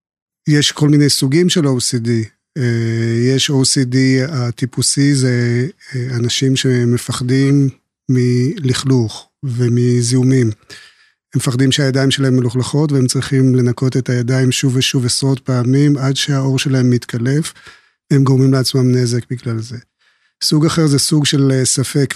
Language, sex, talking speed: Hebrew, male, 120 wpm